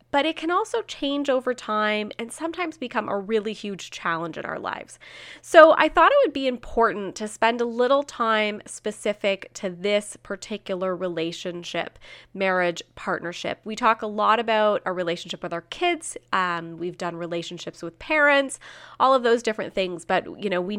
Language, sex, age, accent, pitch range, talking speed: English, female, 20-39, American, 180-235 Hz, 175 wpm